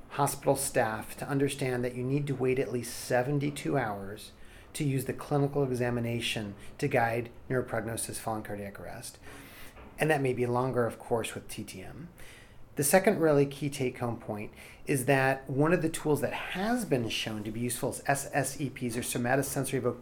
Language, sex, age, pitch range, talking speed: English, male, 40-59, 120-145 Hz, 170 wpm